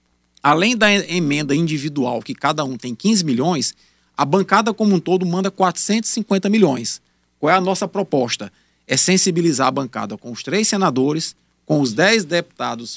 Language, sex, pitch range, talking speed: Portuguese, male, 130-185 Hz, 160 wpm